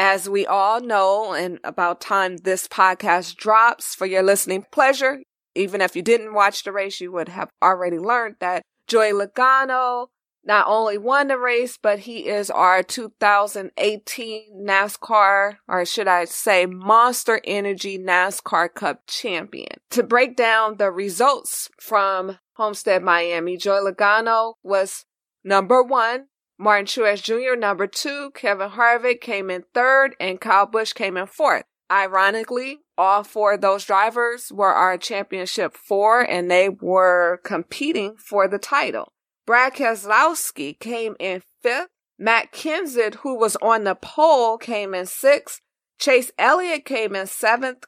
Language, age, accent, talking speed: English, 20-39, American, 145 wpm